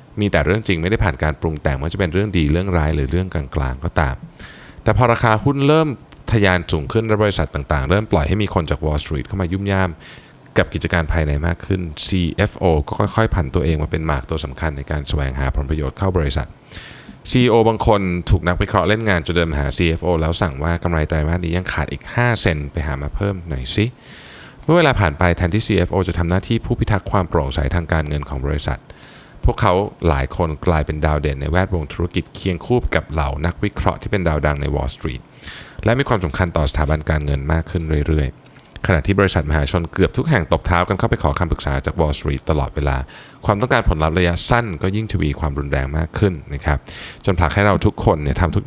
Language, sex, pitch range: Thai, male, 75-100 Hz